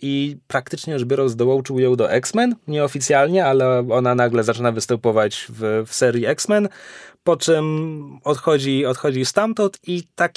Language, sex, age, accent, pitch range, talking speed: Polish, male, 20-39, native, 125-165 Hz, 145 wpm